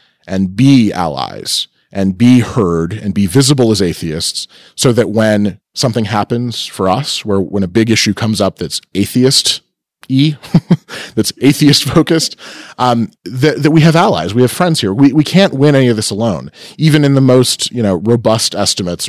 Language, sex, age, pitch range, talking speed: English, male, 30-49, 95-125 Hz, 180 wpm